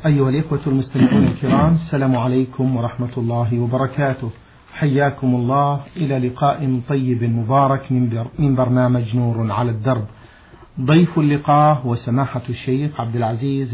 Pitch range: 120-140 Hz